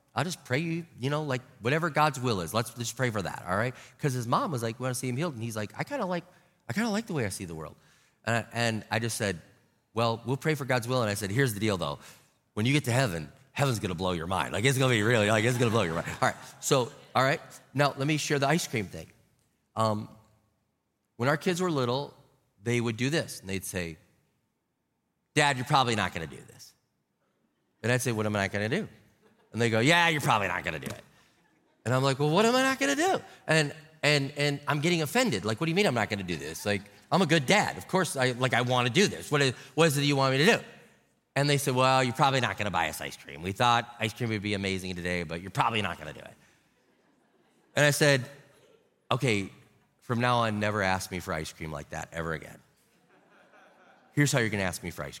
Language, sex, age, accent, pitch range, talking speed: English, male, 30-49, American, 105-145 Hz, 265 wpm